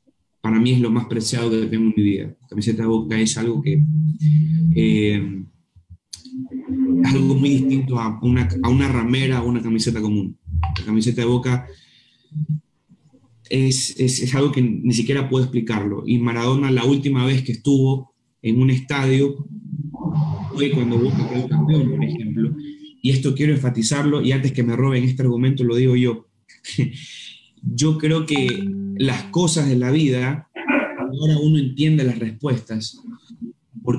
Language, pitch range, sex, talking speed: Spanish, 115-145 Hz, male, 160 wpm